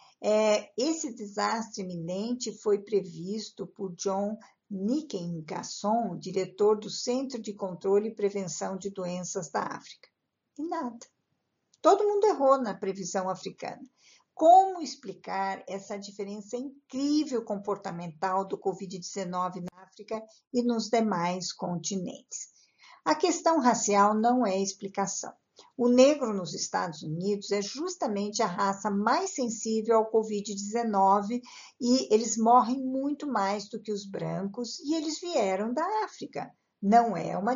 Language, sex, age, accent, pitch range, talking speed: Portuguese, female, 50-69, Brazilian, 195-250 Hz, 125 wpm